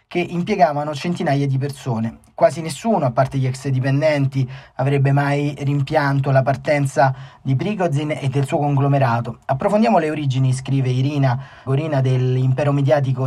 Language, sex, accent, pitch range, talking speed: Italian, male, native, 130-150 Hz, 140 wpm